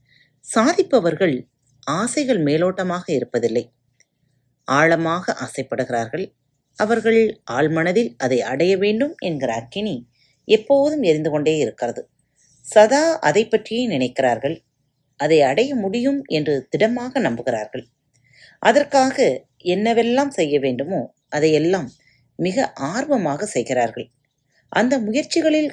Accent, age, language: native, 30-49, Tamil